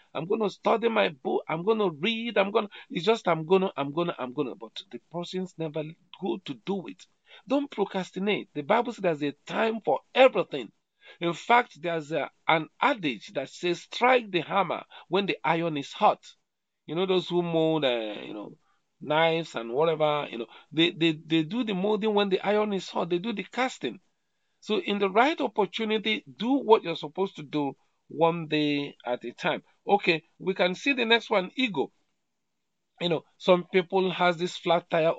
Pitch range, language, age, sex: 160-205 Hz, English, 50-69, male